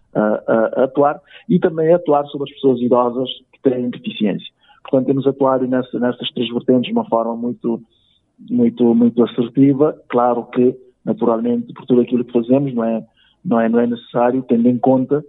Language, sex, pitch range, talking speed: Portuguese, male, 120-135 Hz, 175 wpm